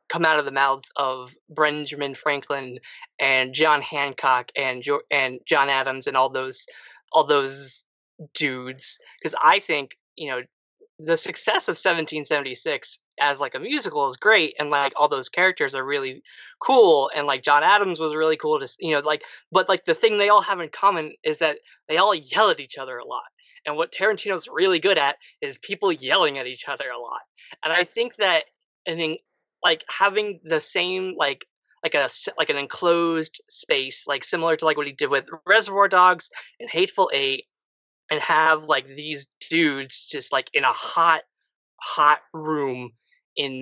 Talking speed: 185 wpm